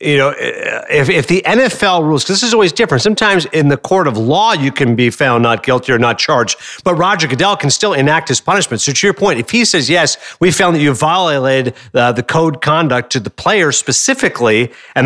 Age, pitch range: 50-69, 135-185 Hz